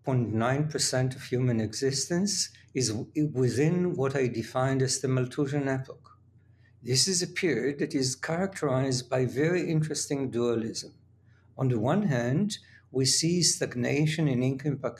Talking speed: 130 wpm